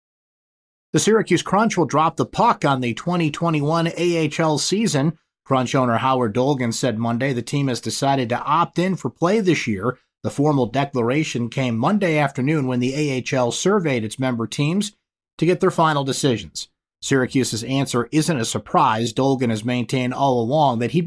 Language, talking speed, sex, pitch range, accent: English, 170 wpm, male, 120-155 Hz, American